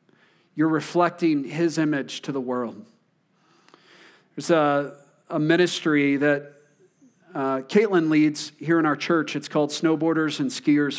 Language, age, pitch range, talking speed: English, 40-59, 150-180 Hz, 130 wpm